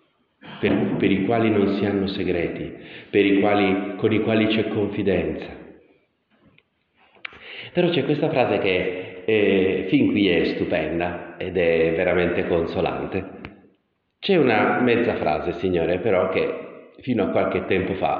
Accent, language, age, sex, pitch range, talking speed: native, Italian, 40-59, male, 90-120 Hz, 130 wpm